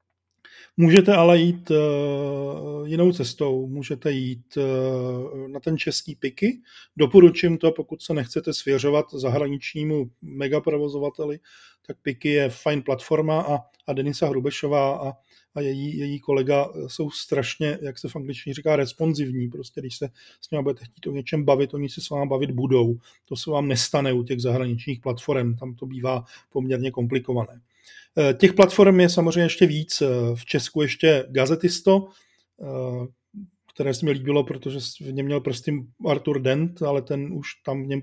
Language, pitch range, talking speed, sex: Czech, 135-160 Hz, 155 wpm, male